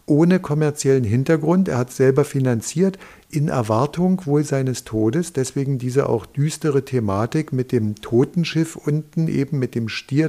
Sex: male